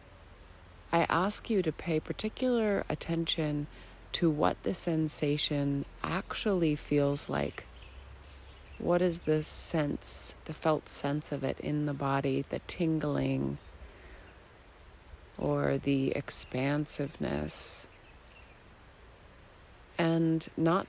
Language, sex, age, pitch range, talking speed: English, female, 30-49, 95-155 Hz, 95 wpm